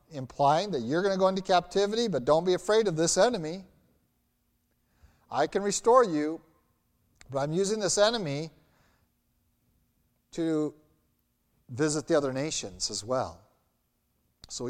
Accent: American